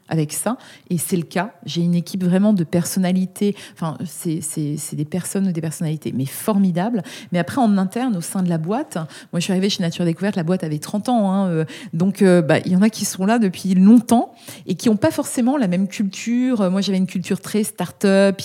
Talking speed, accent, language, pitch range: 235 wpm, French, French, 170-215 Hz